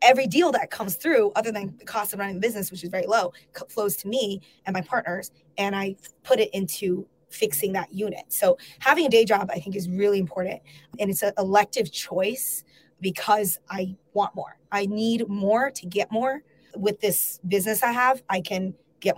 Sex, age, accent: female, 20-39, American